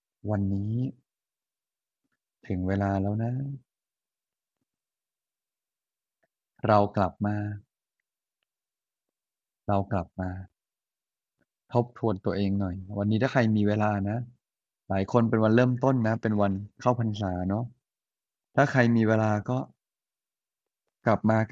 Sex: male